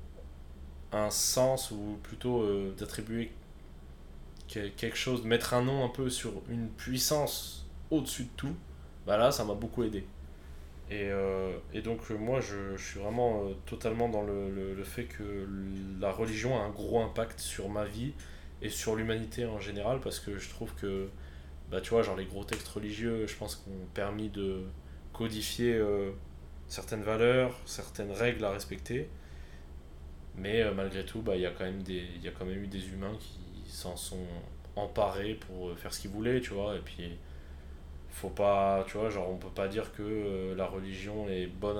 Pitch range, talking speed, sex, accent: 75-105 Hz, 180 wpm, male, French